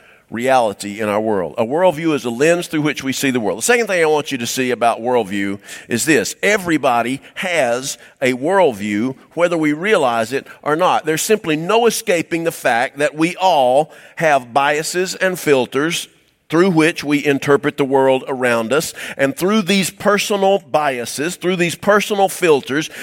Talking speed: 175 wpm